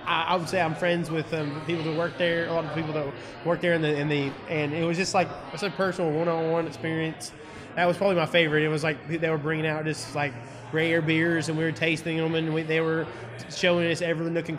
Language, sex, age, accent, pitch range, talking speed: English, male, 20-39, American, 145-165 Hz, 255 wpm